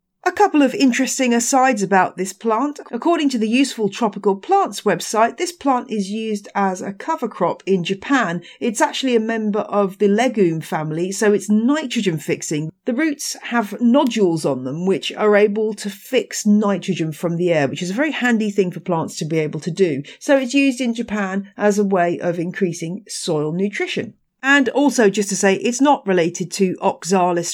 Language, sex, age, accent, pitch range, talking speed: English, female, 40-59, British, 175-240 Hz, 190 wpm